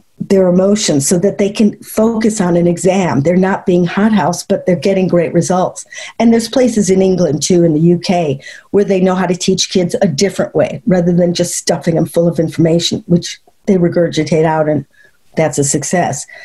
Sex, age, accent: female, 50-69, American